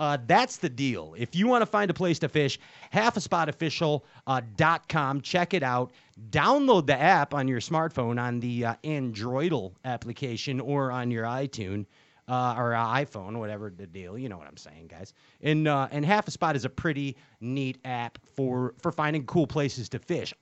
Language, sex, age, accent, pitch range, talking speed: English, male, 30-49, American, 120-160 Hz, 195 wpm